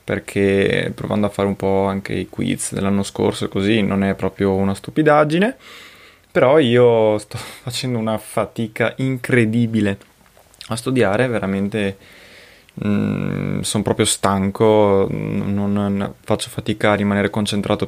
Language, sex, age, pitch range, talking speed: Italian, male, 20-39, 95-110 Hz, 130 wpm